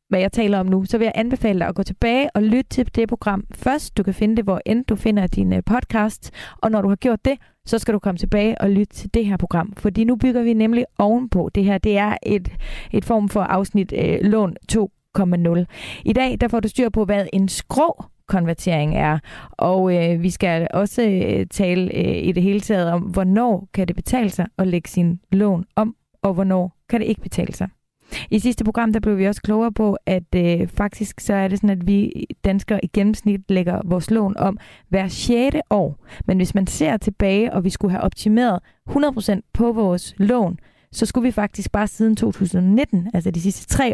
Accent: native